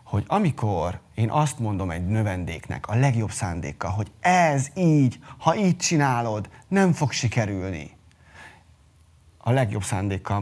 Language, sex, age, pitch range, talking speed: Hungarian, male, 30-49, 110-140 Hz, 125 wpm